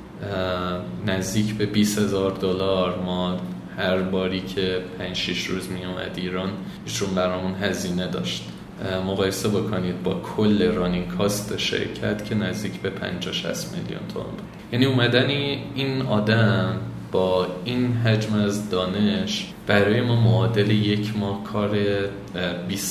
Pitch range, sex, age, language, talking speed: 90-110 Hz, male, 20-39, Persian, 125 wpm